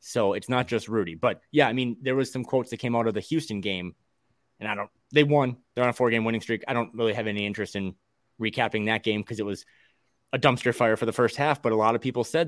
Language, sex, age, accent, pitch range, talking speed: English, male, 20-39, American, 110-130 Hz, 280 wpm